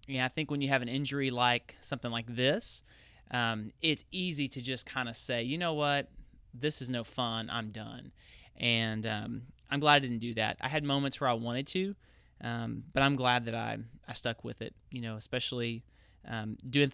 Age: 30-49